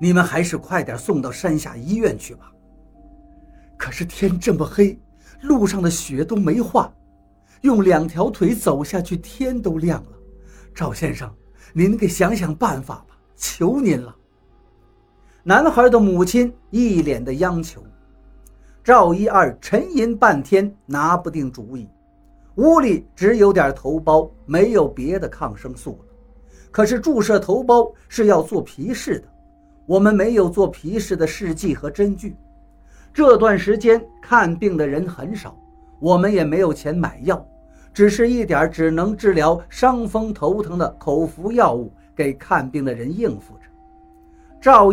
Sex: male